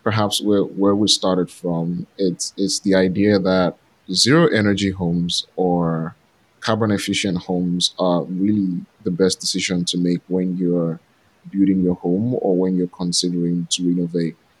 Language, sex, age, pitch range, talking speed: English, male, 20-39, 90-100 Hz, 150 wpm